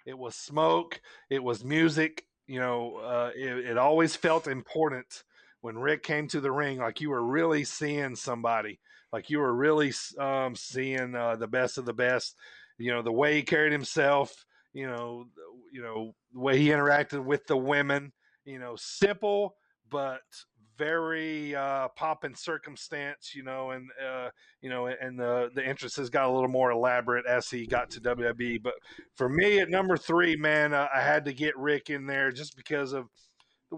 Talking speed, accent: 185 wpm, American